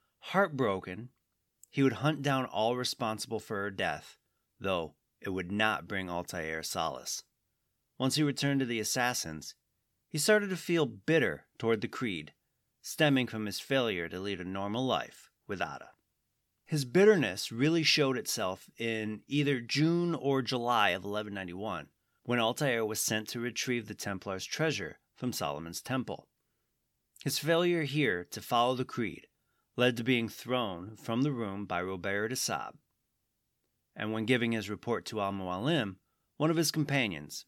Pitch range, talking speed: 105-140 Hz, 150 wpm